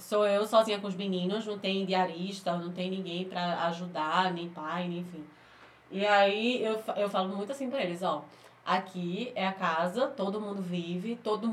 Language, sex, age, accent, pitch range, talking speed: Portuguese, female, 20-39, Brazilian, 185-230 Hz, 190 wpm